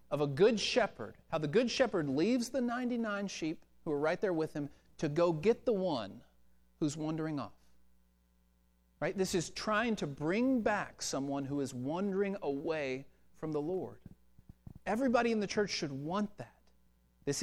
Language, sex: English, male